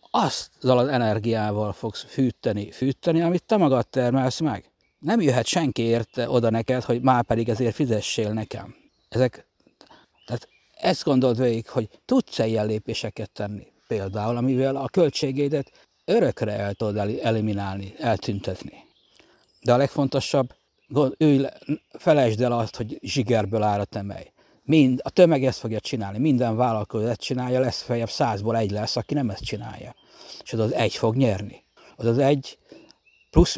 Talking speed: 150 wpm